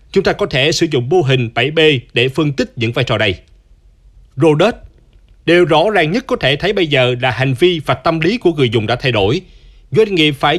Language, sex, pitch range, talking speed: Vietnamese, male, 125-165 Hz, 230 wpm